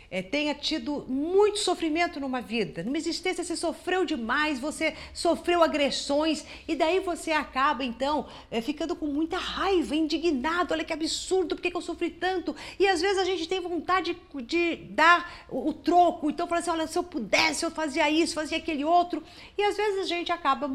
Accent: Brazilian